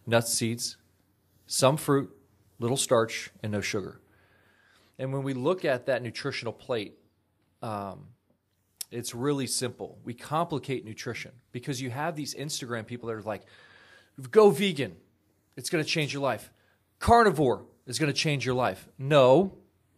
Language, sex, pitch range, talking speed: English, male, 110-150 Hz, 145 wpm